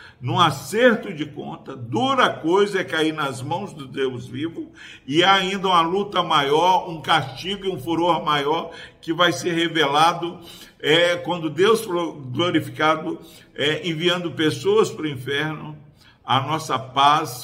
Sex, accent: male, Brazilian